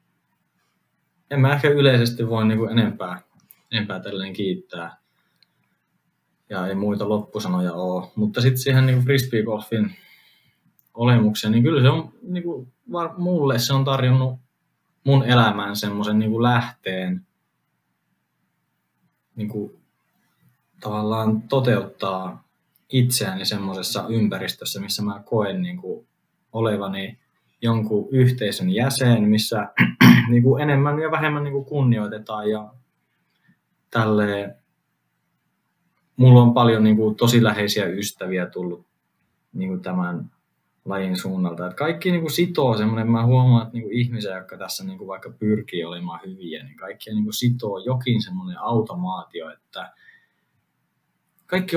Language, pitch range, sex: Finnish, 105-135 Hz, male